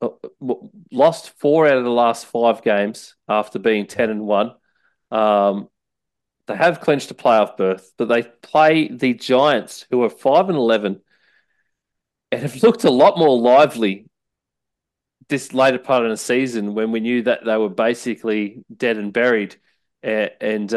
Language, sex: English, male